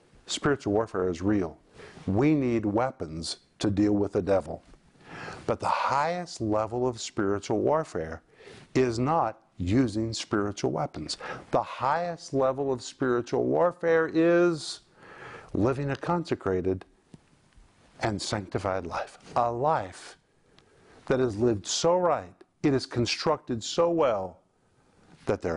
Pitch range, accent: 95-135 Hz, American